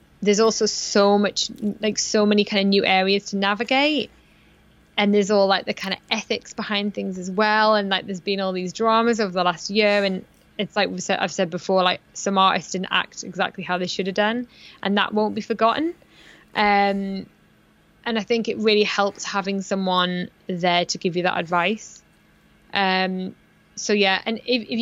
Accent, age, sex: British, 10-29, female